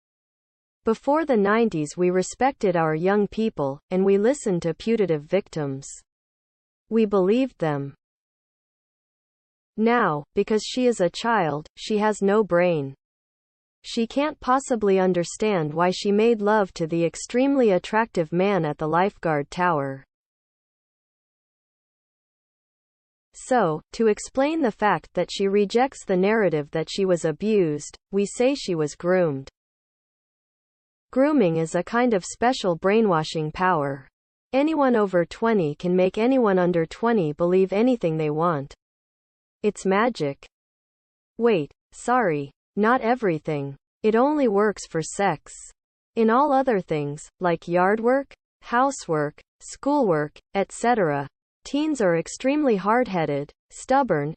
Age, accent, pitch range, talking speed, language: 40-59, American, 160-230 Hz, 120 wpm, English